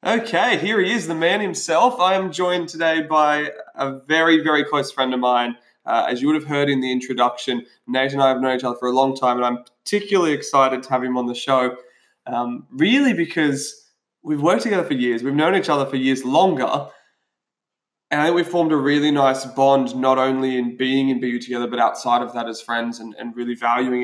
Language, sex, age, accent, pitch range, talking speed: English, male, 20-39, Australian, 125-150 Hz, 225 wpm